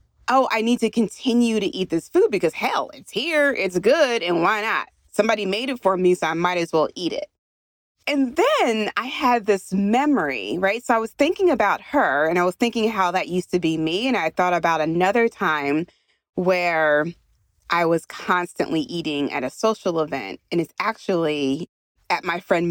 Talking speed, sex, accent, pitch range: 195 wpm, female, American, 170-245 Hz